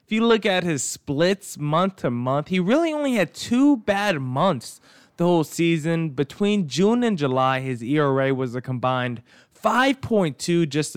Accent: American